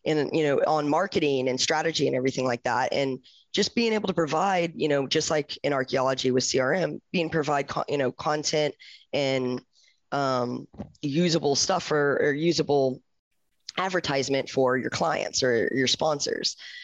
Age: 10-29